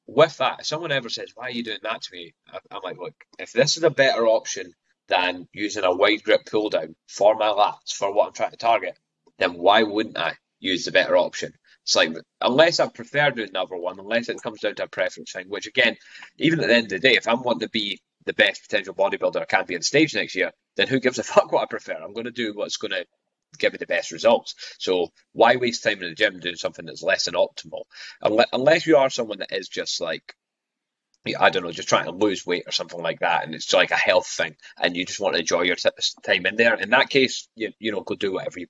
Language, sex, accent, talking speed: English, male, British, 255 wpm